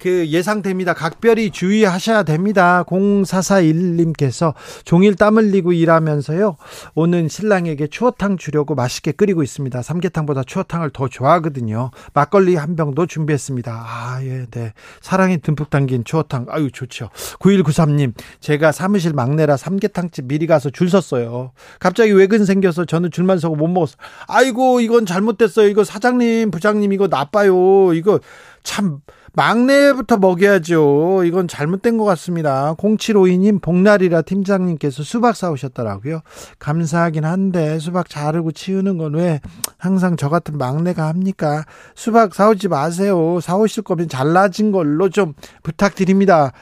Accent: native